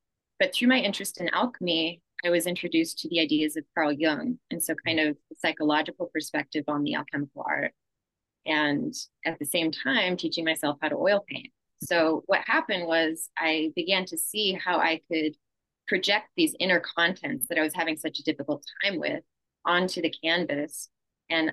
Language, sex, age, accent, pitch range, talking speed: English, female, 20-39, American, 150-175 Hz, 180 wpm